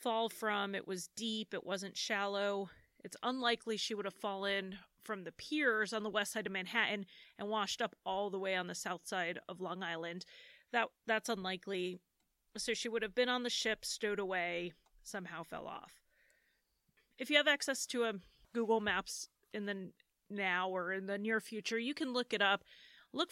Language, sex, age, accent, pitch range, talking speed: English, female, 30-49, American, 190-235 Hz, 190 wpm